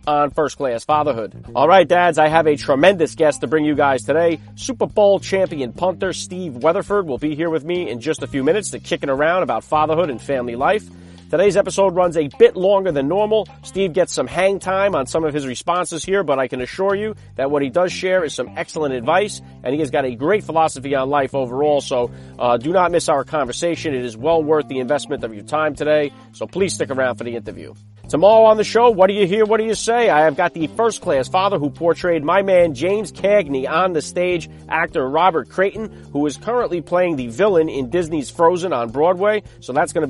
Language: English